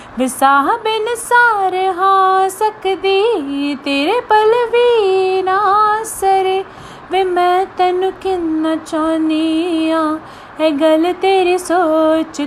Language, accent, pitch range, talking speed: Hindi, native, 315-390 Hz, 80 wpm